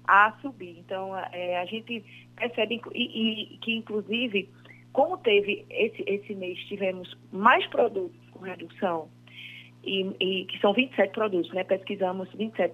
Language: Portuguese